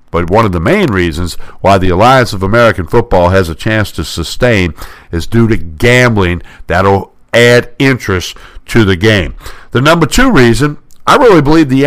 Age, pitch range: 60-79, 100-135 Hz